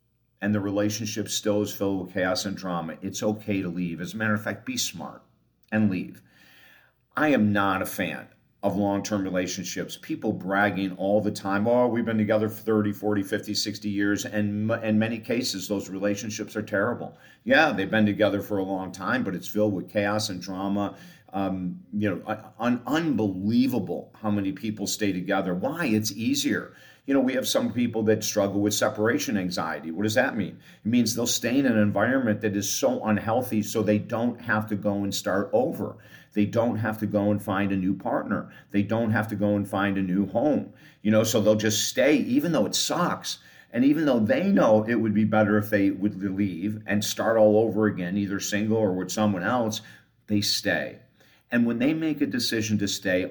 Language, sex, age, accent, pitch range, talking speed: English, male, 50-69, American, 100-110 Hz, 205 wpm